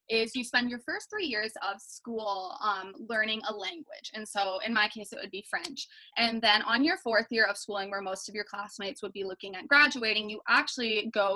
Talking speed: 225 wpm